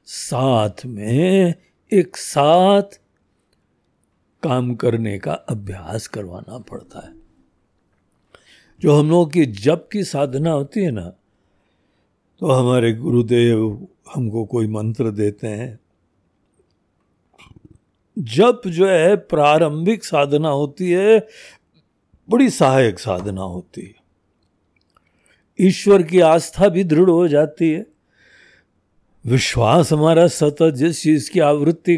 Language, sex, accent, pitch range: Hindi, male, native, 110-175 Hz